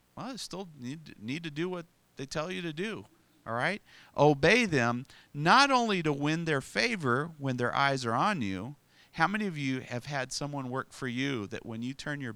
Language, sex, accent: English, male, American